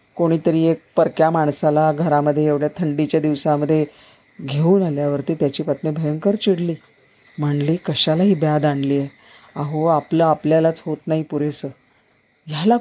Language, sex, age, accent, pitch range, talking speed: Marathi, female, 40-59, native, 150-205 Hz, 120 wpm